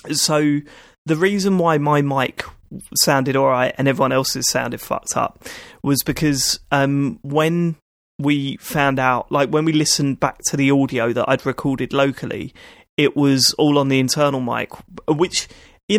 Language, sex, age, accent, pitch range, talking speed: English, male, 30-49, British, 135-155 Hz, 160 wpm